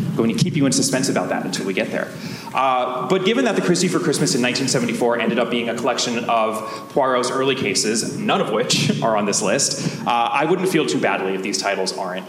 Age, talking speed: 30-49, 240 wpm